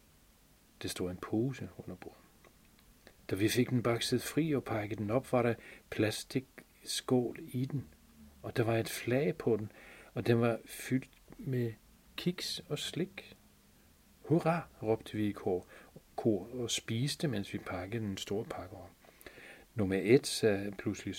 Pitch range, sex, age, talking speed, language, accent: 100-120 Hz, male, 40-59, 155 wpm, Danish, native